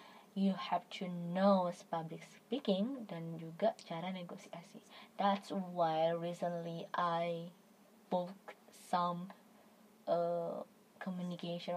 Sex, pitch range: female, 185-210 Hz